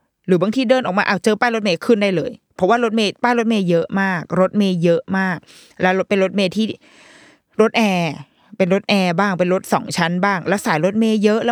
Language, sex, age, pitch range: Thai, female, 20-39, 180-235 Hz